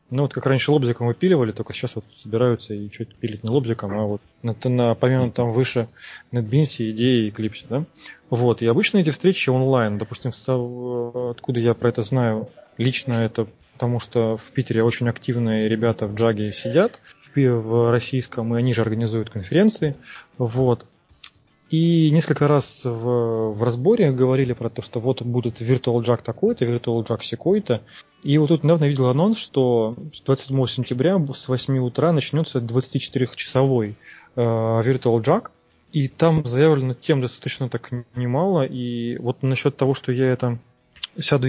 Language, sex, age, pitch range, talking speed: Russian, male, 20-39, 115-135 Hz, 165 wpm